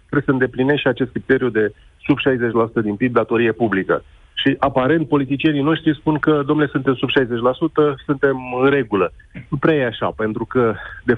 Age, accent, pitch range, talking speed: 30-49, native, 120-150 Hz, 175 wpm